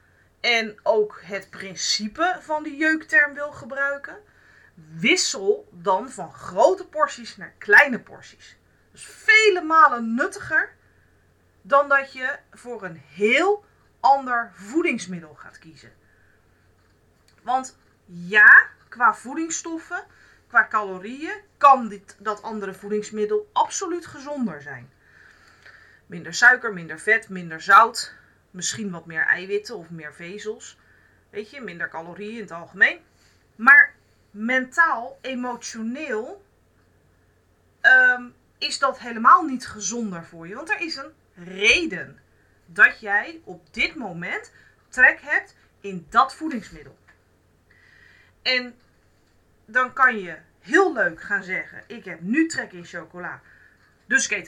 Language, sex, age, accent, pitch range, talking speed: Dutch, female, 30-49, Dutch, 175-290 Hz, 120 wpm